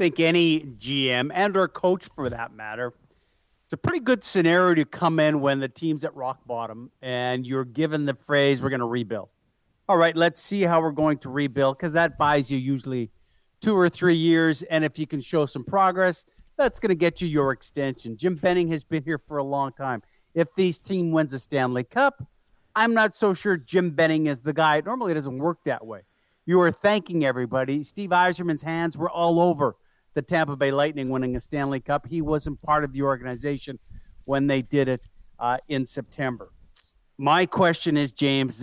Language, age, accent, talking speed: English, 50-69, American, 205 wpm